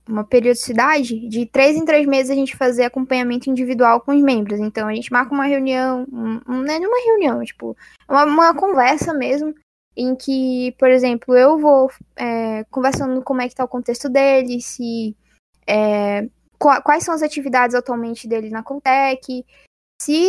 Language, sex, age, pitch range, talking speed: Portuguese, female, 10-29, 255-310 Hz, 155 wpm